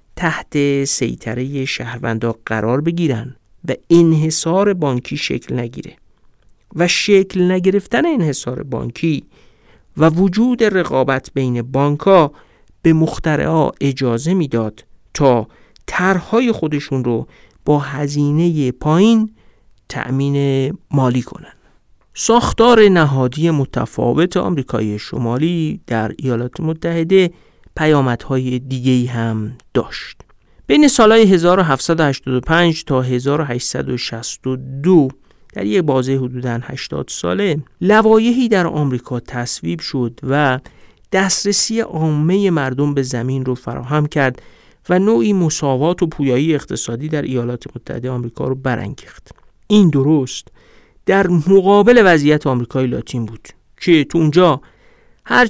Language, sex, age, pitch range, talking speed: Persian, male, 50-69, 125-175 Hz, 105 wpm